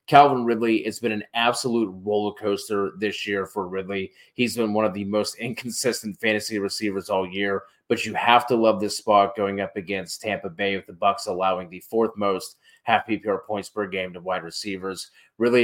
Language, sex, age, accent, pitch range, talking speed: English, male, 30-49, American, 100-110 Hz, 195 wpm